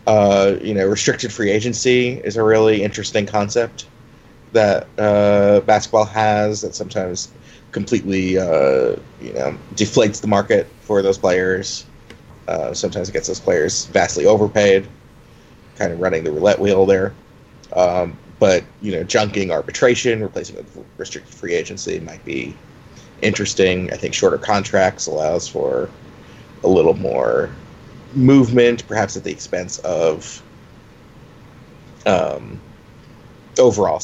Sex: male